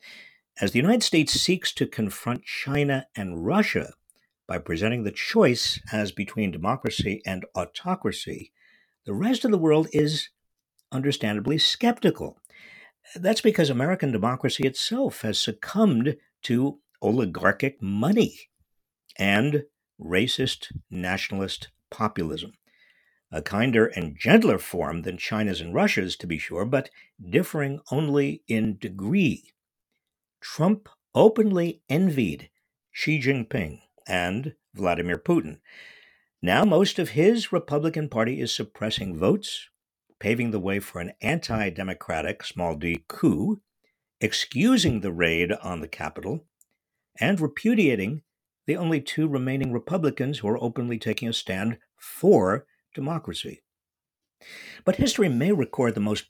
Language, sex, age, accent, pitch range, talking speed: English, male, 50-69, American, 105-160 Hz, 115 wpm